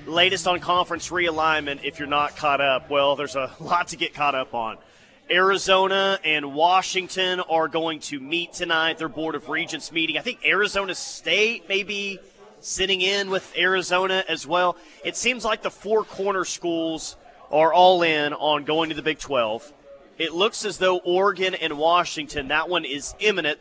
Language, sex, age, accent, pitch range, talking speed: English, male, 30-49, American, 155-195 Hz, 180 wpm